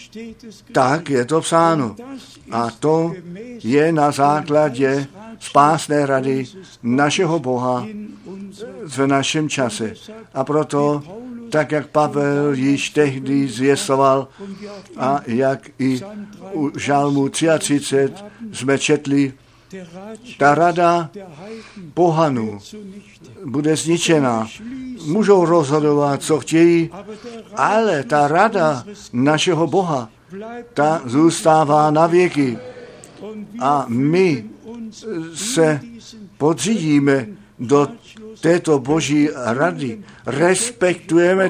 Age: 60-79